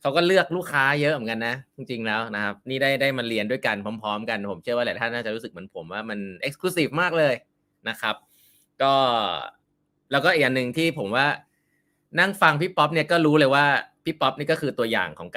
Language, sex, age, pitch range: Thai, male, 20-39, 115-160 Hz